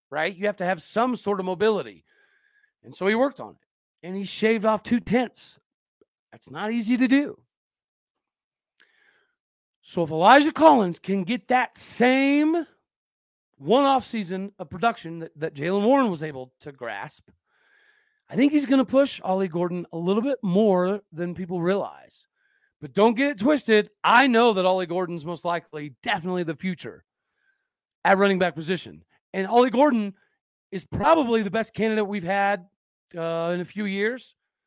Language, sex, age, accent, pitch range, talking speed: English, male, 40-59, American, 175-245 Hz, 165 wpm